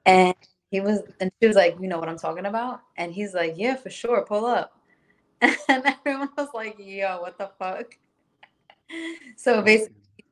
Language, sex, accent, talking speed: English, female, American, 180 wpm